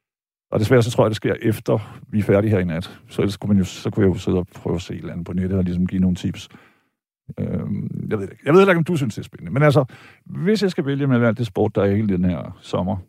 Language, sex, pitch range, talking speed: Danish, male, 105-160 Hz, 315 wpm